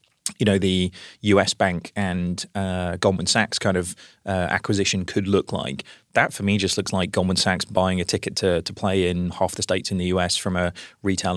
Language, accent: English, British